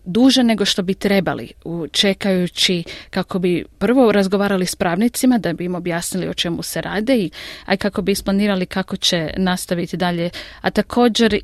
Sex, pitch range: female, 180-215 Hz